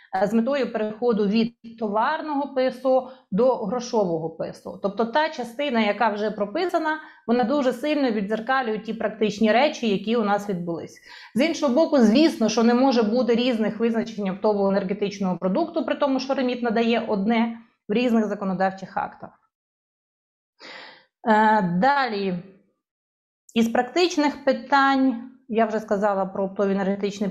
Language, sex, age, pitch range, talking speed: Ukrainian, female, 30-49, 215-275 Hz, 130 wpm